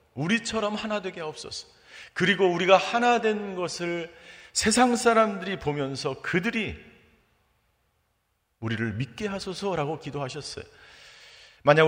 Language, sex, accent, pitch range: Korean, male, native, 105-160 Hz